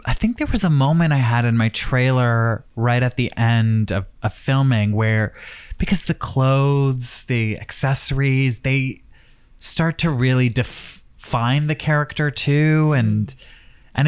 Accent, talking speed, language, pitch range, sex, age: American, 150 wpm, English, 110-140 Hz, male, 20-39